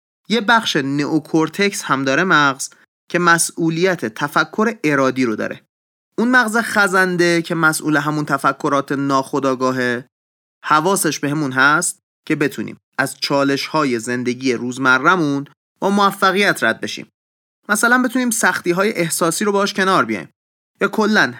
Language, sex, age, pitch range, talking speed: Persian, male, 30-49, 130-180 Hz, 130 wpm